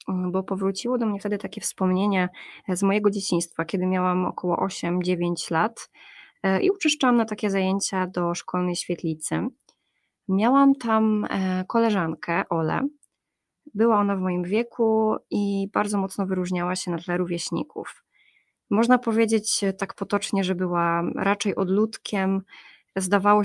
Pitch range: 175-210 Hz